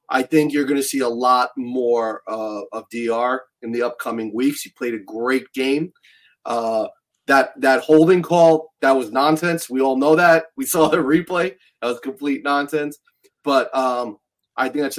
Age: 30-49